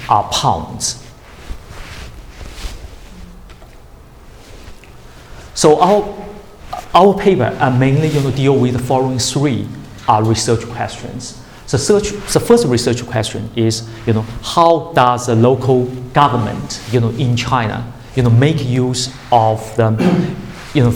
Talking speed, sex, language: 125 wpm, male, English